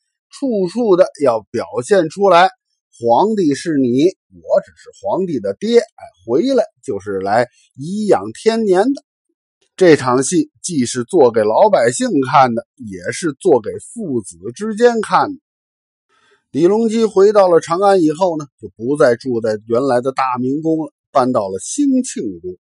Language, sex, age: Chinese, male, 50-69